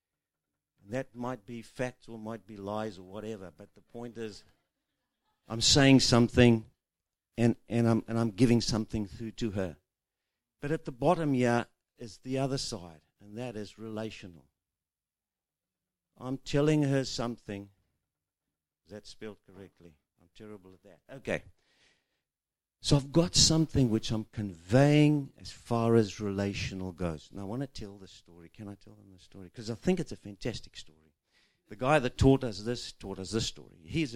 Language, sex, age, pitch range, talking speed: English, male, 50-69, 85-120 Hz, 170 wpm